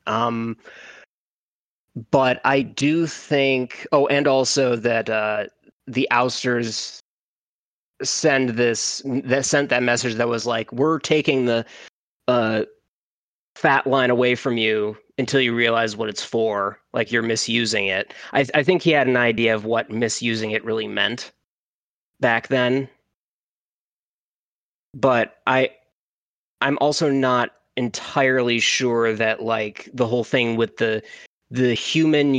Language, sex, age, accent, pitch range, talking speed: English, male, 20-39, American, 115-140 Hz, 135 wpm